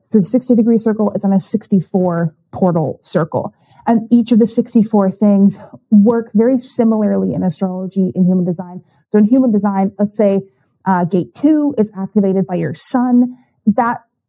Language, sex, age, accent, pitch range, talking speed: English, female, 30-49, American, 195-230 Hz, 165 wpm